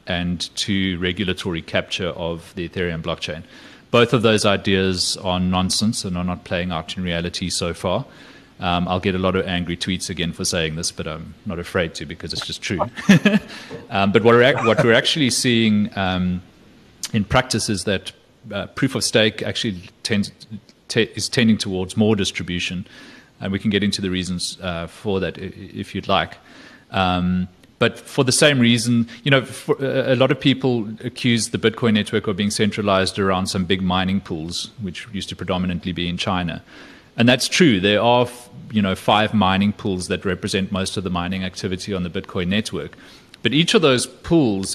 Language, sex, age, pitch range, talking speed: English, male, 30-49, 90-115 Hz, 185 wpm